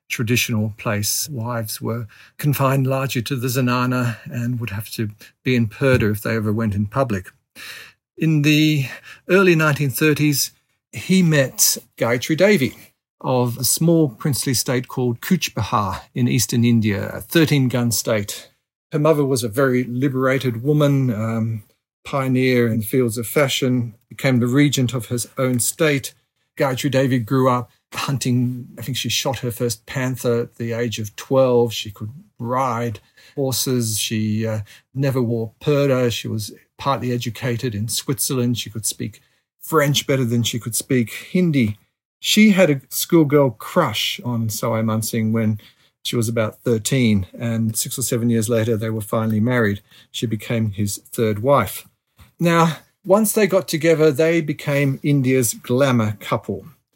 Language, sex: English, male